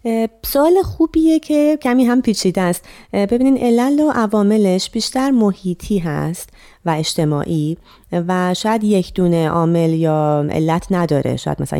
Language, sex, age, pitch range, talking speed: Persian, female, 30-49, 150-210 Hz, 130 wpm